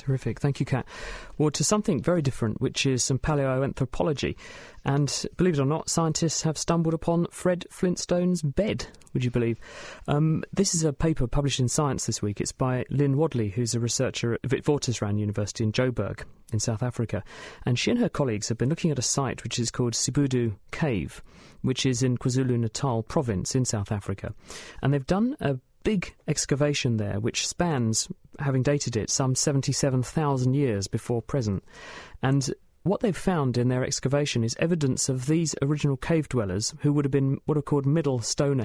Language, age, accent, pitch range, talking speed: English, 40-59, British, 120-150 Hz, 185 wpm